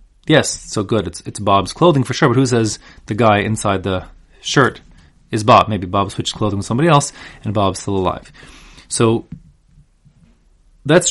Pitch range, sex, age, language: 110-145 Hz, male, 30-49, English